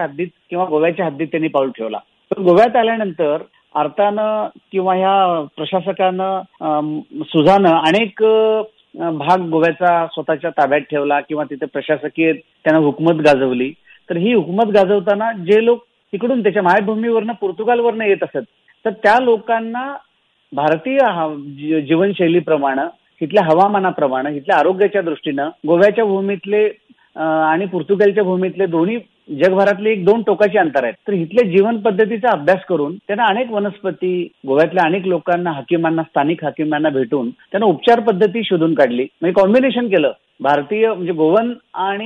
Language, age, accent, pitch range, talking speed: Hindi, 40-59, native, 160-215 Hz, 75 wpm